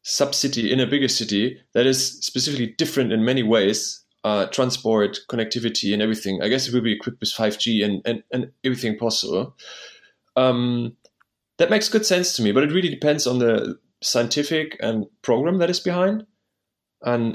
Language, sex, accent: English, male, German